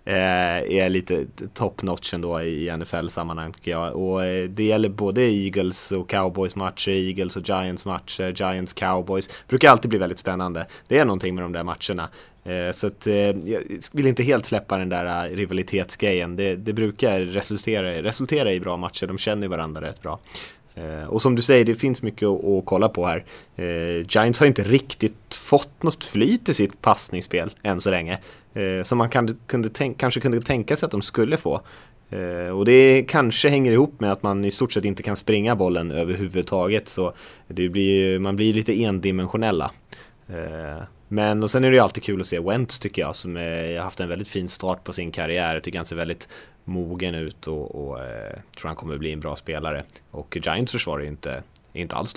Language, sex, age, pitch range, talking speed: Swedish, male, 20-39, 90-110 Hz, 190 wpm